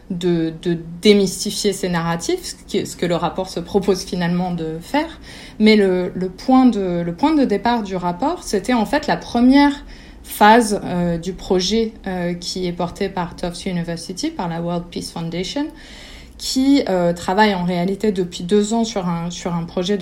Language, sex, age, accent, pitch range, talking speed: French, female, 20-39, French, 175-230 Hz, 175 wpm